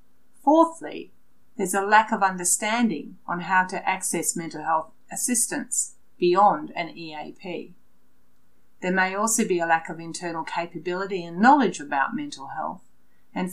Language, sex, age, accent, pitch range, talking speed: English, female, 40-59, Australian, 180-255 Hz, 140 wpm